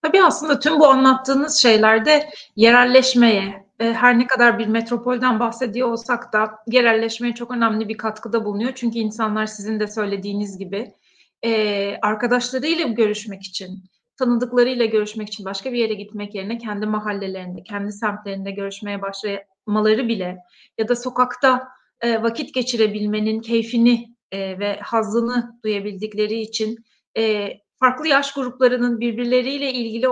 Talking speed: 120 wpm